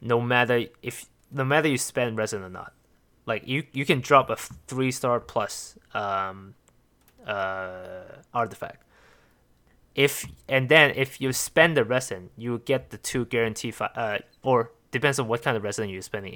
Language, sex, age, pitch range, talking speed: English, male, 20-39, 110-135 Hz, 170 wpm